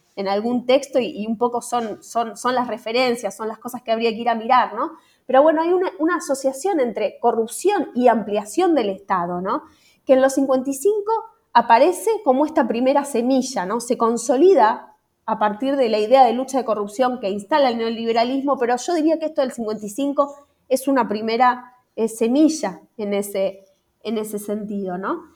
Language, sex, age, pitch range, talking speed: Spanish, female, 20-39, 220-295 Hz, 175 wpm